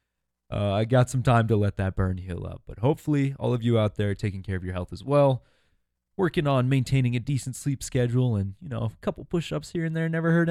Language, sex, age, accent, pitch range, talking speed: English, male, 20-39, American, 100-130 Hz, 250 wpm